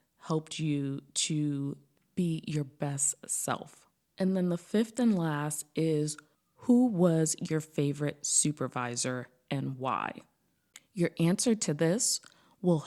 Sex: female